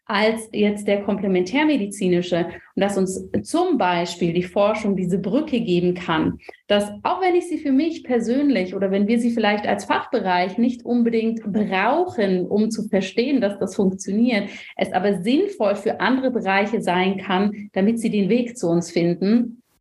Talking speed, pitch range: 165 wpm, 190-230 Hz